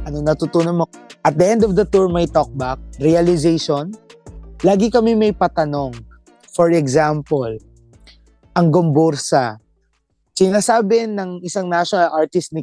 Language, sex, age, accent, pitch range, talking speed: Filipino, male, 20-39, native, 150-210 Hz, 125 wpm